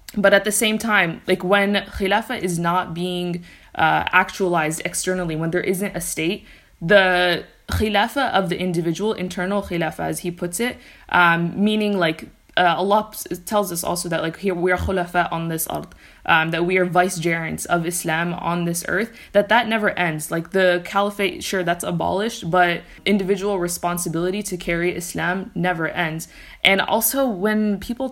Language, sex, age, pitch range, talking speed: English, female, 20-39, 175-200 Hz, 170 wpm